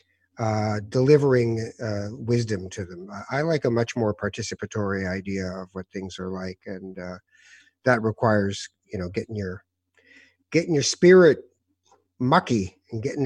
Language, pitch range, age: English, 105-130 Hz, 50-69